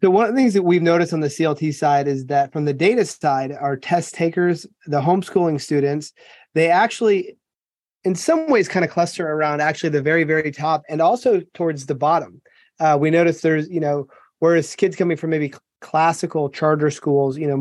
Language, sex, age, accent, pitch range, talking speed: English, male, 30-49, American, 145-175 Hz, 200 wpm